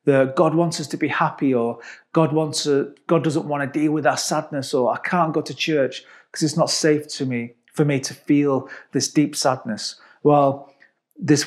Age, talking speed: 40-59, 210 wpm